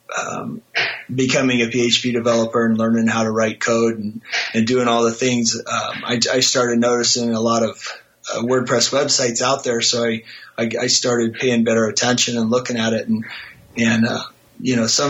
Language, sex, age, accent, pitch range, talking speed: English, male, 30-49, American, 115-125 Hz, 190 wpm